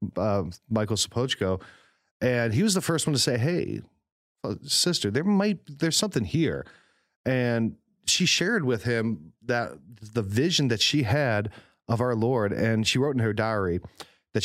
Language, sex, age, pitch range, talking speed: English, male, 40-59, 100-130 Hz, 160 wpm